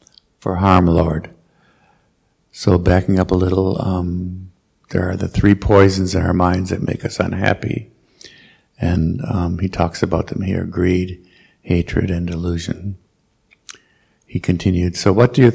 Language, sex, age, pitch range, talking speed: English, male, 60-79, 90-110 Hz, 145 wpm